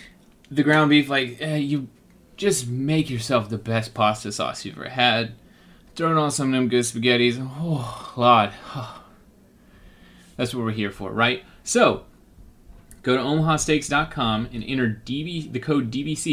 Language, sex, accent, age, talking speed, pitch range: English, male, American, 30-49, 145 wpm, 120-155 Hz